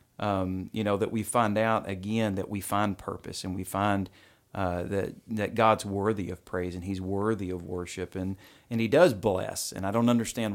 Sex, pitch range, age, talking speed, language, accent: male, 95-115 Hz, 40-59, 205 wpm, English, American